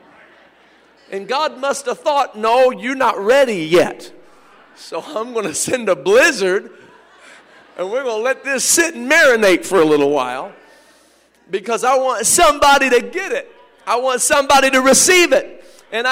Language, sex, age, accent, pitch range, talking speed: English, male, 50-69, American, 230-320 Hz, 165 wpm